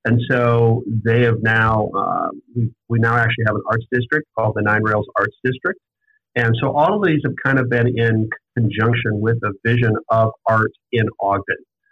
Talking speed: 190 wpm